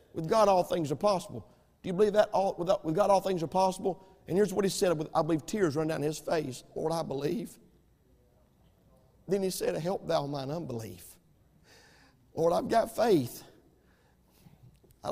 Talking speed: 180 wpm